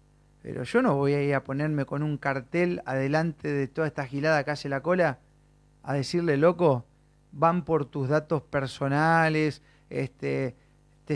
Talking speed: 160 wpm